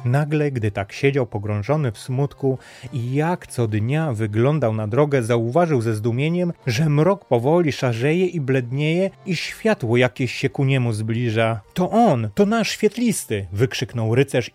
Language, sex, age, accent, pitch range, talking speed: Polish, male, 30-49, native, 115-145 Hz, 160 wpm